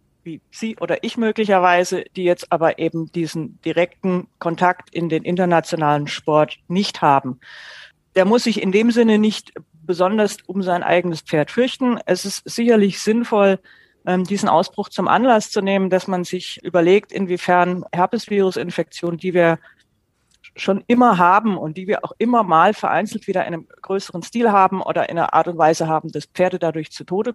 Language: German